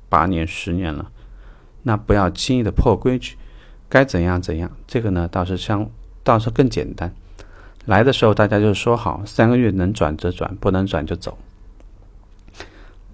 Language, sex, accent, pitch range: Chinese, male, native, 90-115 Hz